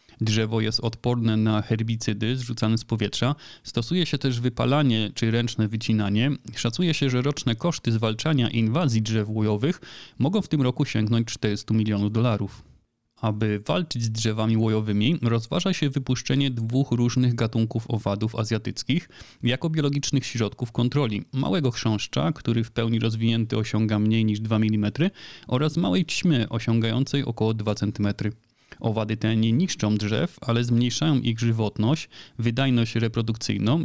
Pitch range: 110-135 Hz